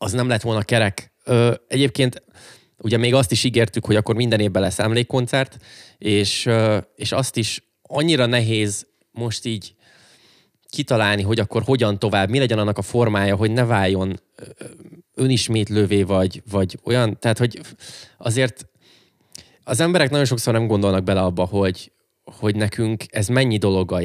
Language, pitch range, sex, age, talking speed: Hungarian, 100-120 Hz, male, 20-39, 140 wpm